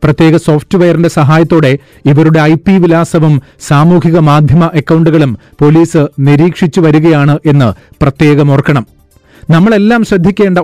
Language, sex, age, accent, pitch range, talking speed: Malayalam, male, 40-59, native, 145-175 Hz, 95 wpm